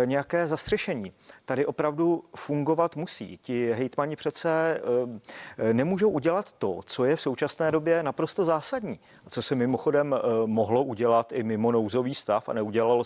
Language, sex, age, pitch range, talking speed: Czech, male, 40-59, 120-140 Hz, 140 wpm